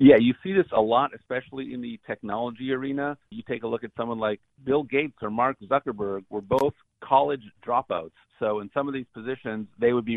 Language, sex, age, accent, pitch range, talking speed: English, male, 50-69, American, 105-125 Hz, 210 wpm